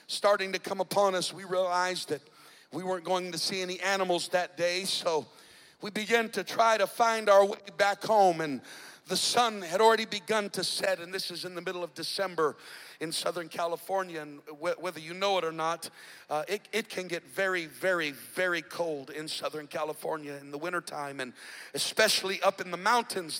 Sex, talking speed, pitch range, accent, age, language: male, 190 wpm, 175-225 Hz, American, 50-69, English